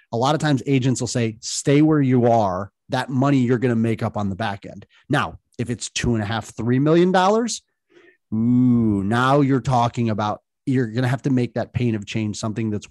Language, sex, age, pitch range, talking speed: English, male, 30-49, 110-135 Hz, 225 wpm